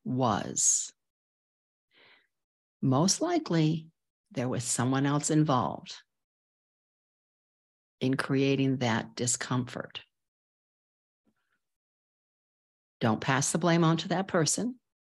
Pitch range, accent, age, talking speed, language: 130-175 Hz, American, 60-79, 80 wpm, English